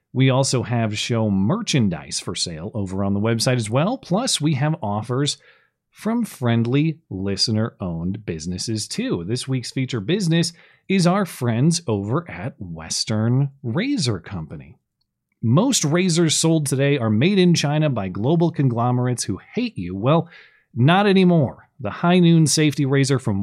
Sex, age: male, 30-49